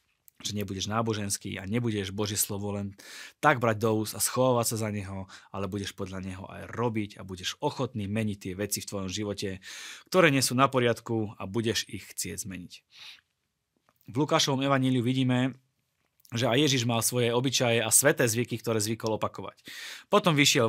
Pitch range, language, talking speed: 100-120 Hz, Slovak, 170 wpm